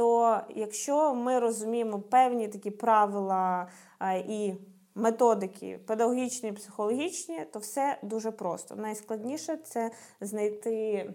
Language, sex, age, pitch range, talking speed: Ukrainian, female, 20-39, 210-255 Hz, 100 wpm